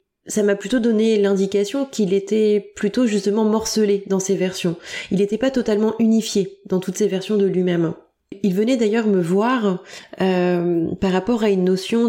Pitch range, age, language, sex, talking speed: 195-235 Hz, 20-39, French, female, 175 wpm